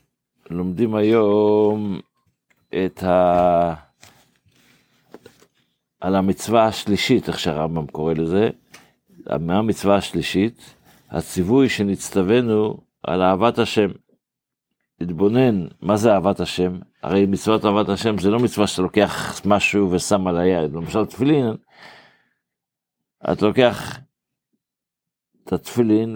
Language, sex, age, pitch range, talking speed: Hebrew, male, 50-69, 95-110 Hz, 100 wpm